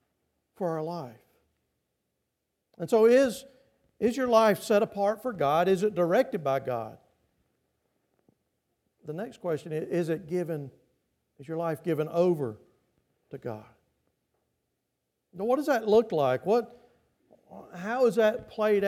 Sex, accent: male, American